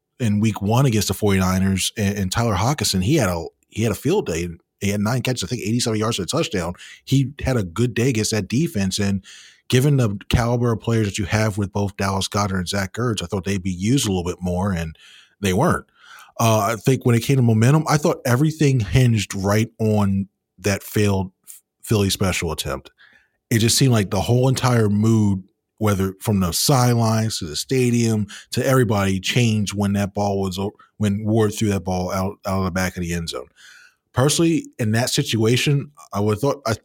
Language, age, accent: English, 30-49, American